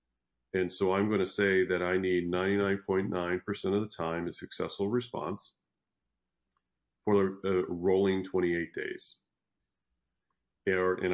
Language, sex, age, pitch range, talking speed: English, male, 40-59, 80-95 Hz, 120 wpm